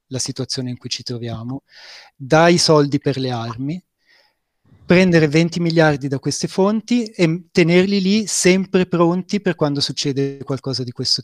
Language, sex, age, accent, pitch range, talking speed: Italian, male, 30-49, native, 130-160 Hz, 150 wpm